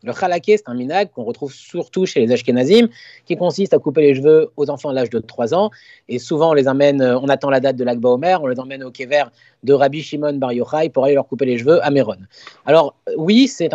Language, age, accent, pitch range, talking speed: French, 30-49, French, 140-190 Hz, 250 wpm